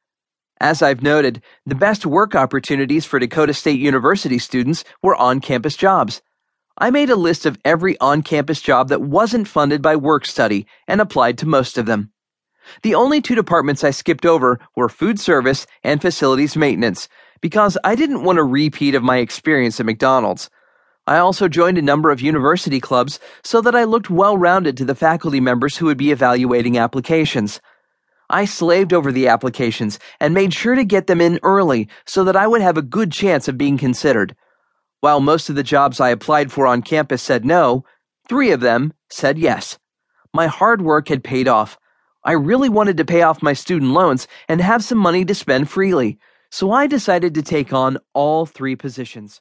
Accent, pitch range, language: American, 135-180 Hz, English